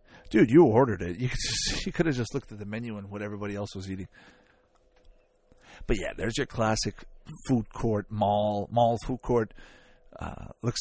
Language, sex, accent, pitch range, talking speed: English, male, American, 100-125 Hz, 190 wpm